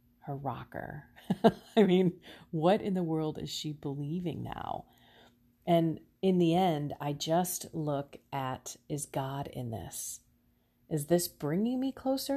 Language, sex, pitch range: English, female, 145-215 Hz